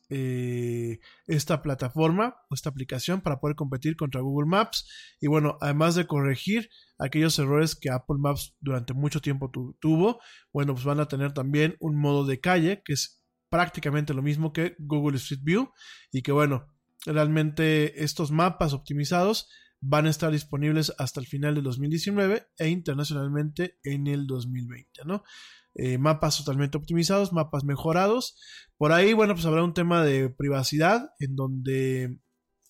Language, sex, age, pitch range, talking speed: Spanish, male, 20-39, 140-165 Hz, 155 wpm